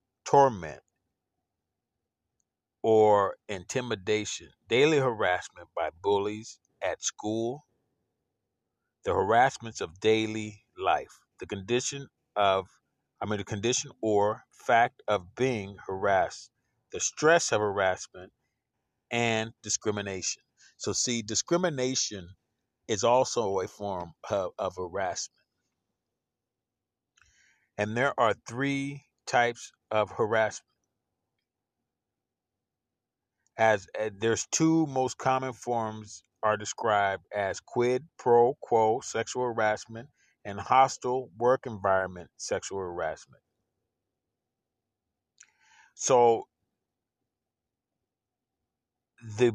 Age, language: 40-59, English